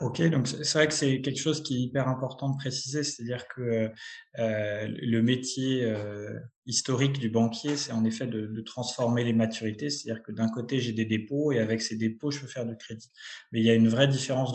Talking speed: 225 wpm